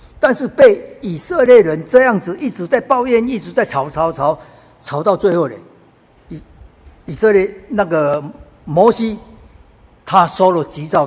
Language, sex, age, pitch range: Chinese, male, 50-69, 145-220 Hz